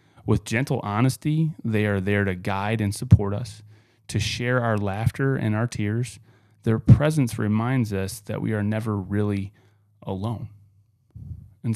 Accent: American